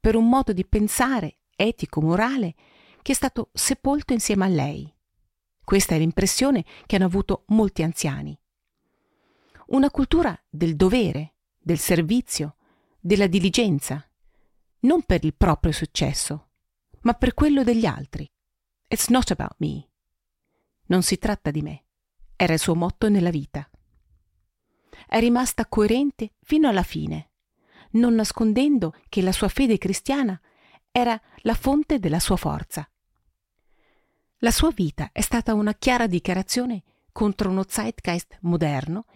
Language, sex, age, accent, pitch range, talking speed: Italian, female, 40-59, native, 165-235 Hz, 130 wpm